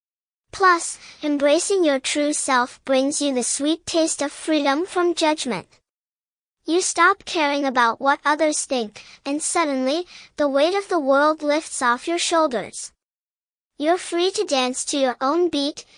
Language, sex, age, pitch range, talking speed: English, male, 10-29, 270-330 Hz, 150 wpm